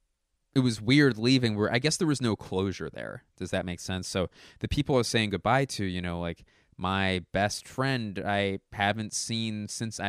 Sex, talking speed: male, 210 wpm